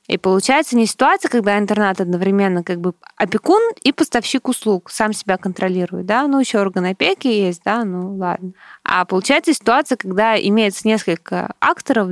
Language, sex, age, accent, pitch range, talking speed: Russian, female, 20-39, native, 190-225 Hz, 160 wpm